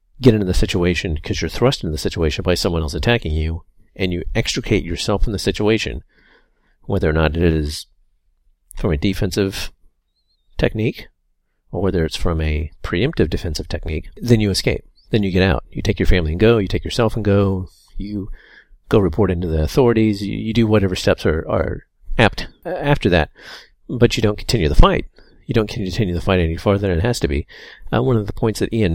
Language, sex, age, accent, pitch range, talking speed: English, male, 40-59, American, 85-110 Hz, 200 wpm